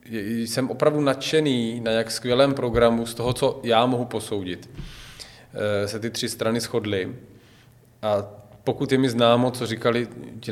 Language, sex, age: Czech, male, 20-39